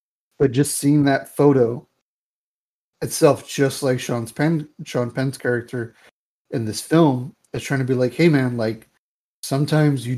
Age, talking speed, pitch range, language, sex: 30-49, 155 wpm, 125-150 Hz, English, male